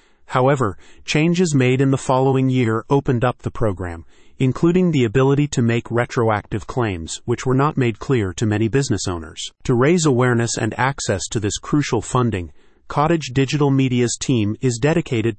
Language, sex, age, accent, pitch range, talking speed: English, male, 40-59, American, 110-135 Hz, 165 wpm